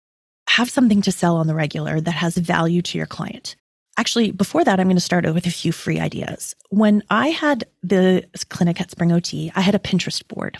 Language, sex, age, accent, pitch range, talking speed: English, female, 30-49, American, 170-195 Hz, 215 wpm